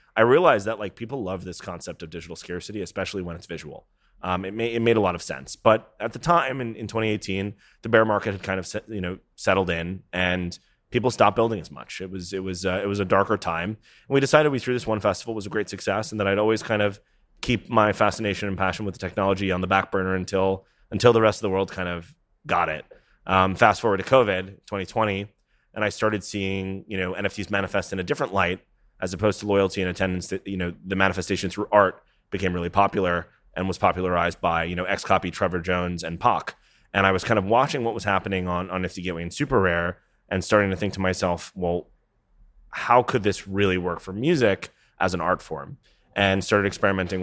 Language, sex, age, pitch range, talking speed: English, male, 30-49, 90-105 Hz, 235 wpm